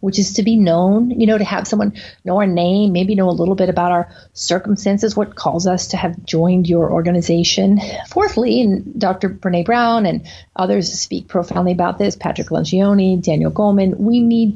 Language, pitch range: English, 180-215 Hz